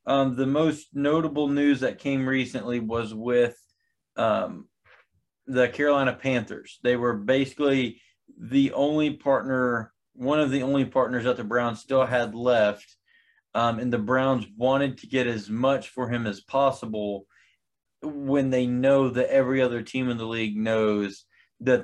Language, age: English, 20-39